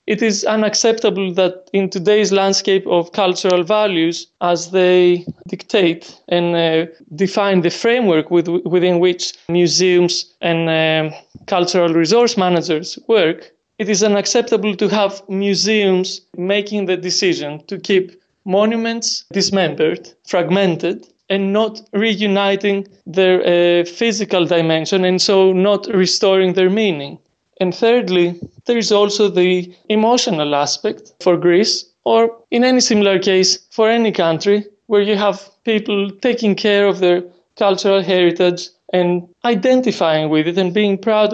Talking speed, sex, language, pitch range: 130 wpm, male, English, 175-205 Hz